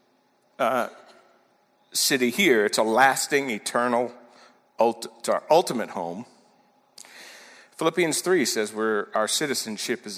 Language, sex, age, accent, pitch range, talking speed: English, male, 50-69, American, 120-150 Hz, 110 wpm